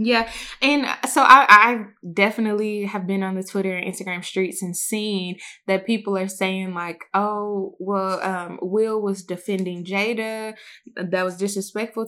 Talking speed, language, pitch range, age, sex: 155 wpm, English, 185-220 Hz, 20-39, female